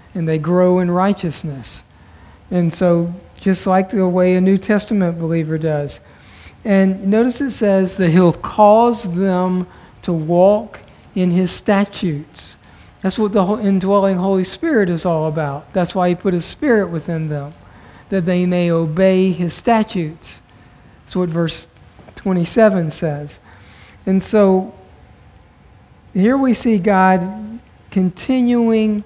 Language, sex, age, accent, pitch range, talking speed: English, male, 50-69, American, 165-200 Hz, 130 wpm